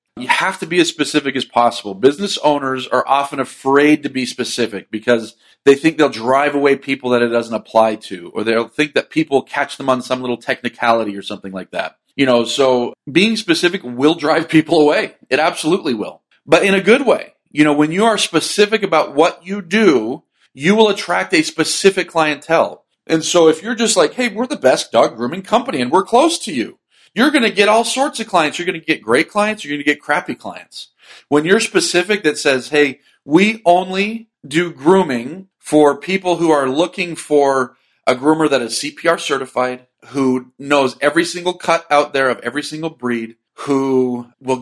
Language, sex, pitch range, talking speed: English, male, 130-170 Hz, 200 wpm